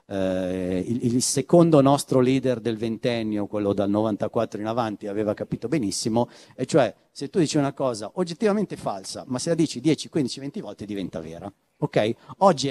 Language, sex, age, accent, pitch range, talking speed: Italian, male, 50-69, native, 115-150 Hz, 165 wpm